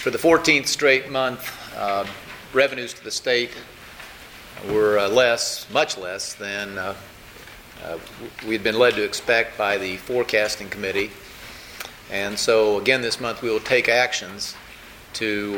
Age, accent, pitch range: 40-59, American, 100-125 Hz